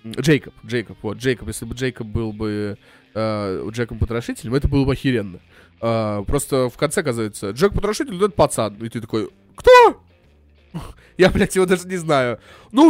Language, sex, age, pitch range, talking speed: Russian, male, 20-39, 115-150 Hz, 160 wpm